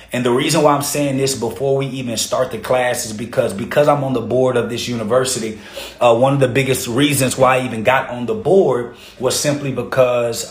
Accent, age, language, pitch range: American, 30-49, English, 120-135 Hz